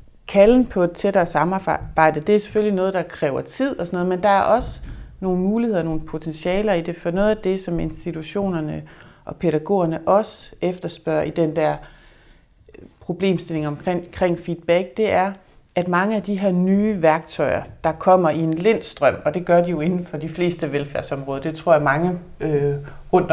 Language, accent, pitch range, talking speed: Danish, native, 155-200 Hz, 185 wpm